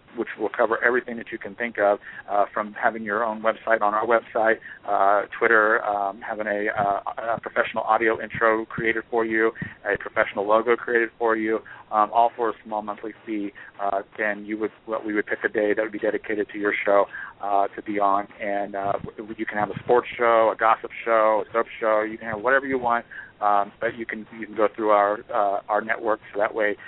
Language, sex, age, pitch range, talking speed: English, male, 40-59, 105-115 Hz, 215 wpm